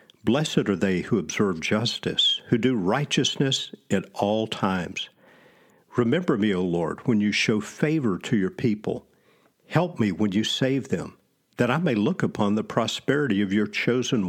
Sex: male